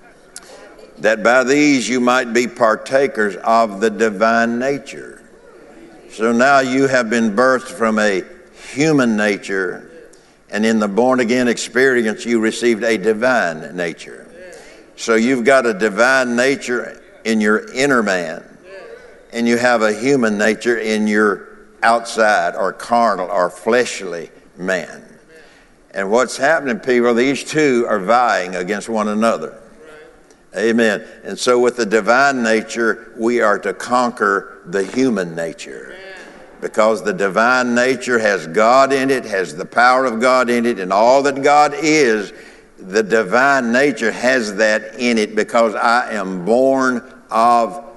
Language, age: English, 60-79